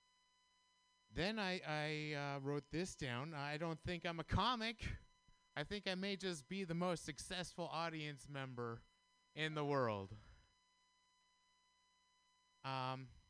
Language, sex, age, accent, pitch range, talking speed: English, male, 30-49, American, 150-245 Hz, 125 wpm